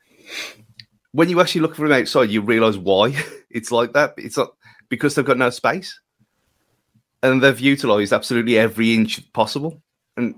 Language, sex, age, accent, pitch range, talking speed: English, male, 30-49, British, 110-145 Hz, 155 wpm